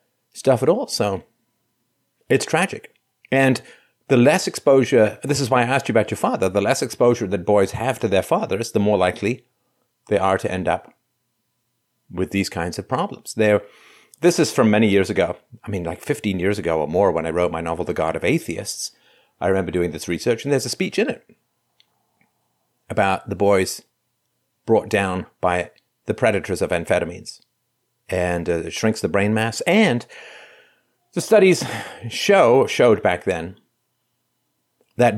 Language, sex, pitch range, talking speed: English, male, 95-125 Hz, 170 wpm